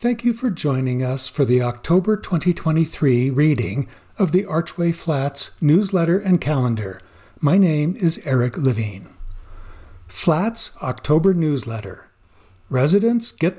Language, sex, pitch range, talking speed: English, male, 120-185 Hz, 120 wpm